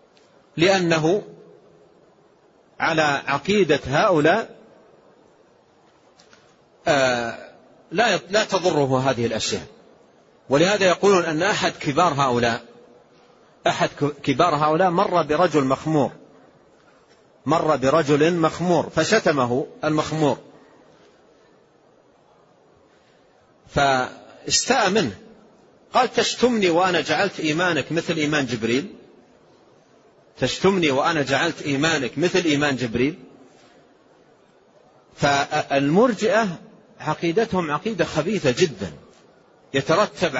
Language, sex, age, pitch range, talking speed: Arabic, male, 40-59, 140-180 Hz, 75 wpm